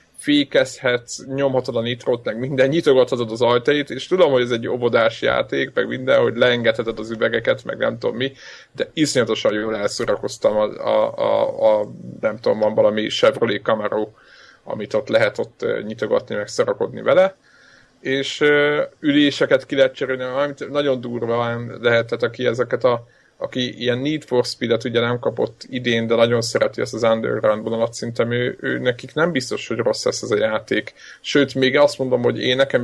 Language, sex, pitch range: Hungarian, male, 120-155 Hz